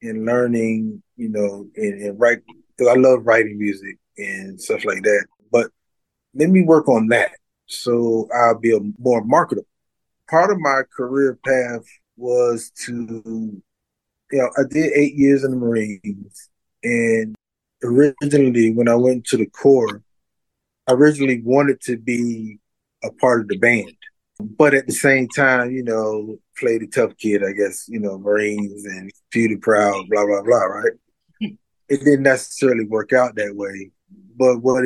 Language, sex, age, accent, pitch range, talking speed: English, male, 20-39, American, 105-130 Hz, 160 wpm